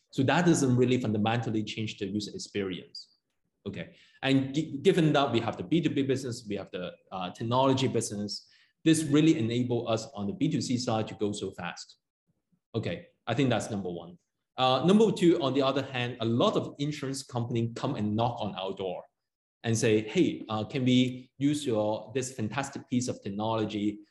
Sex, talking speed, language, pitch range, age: male, 180 wpm, English, 105-135 Hz, 20-39